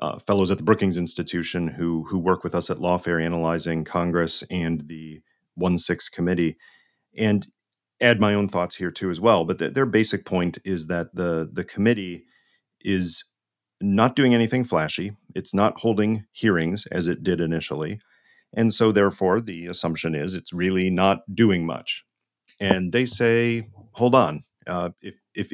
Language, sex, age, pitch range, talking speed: English, male, 40-59, 85-105 Hz, 165 wpm